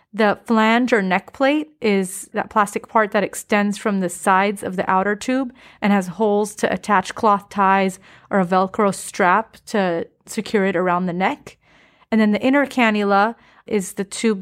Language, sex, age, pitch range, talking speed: English, female, 30-49, 190-220 Hz, 180 wpm